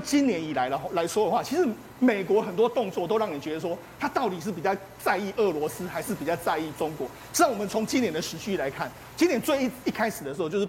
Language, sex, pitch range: Chinese, male, 175-250 Hz